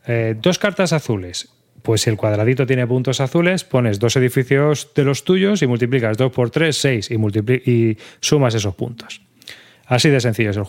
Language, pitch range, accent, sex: Spanish, 115-150 Hz, Spanish, male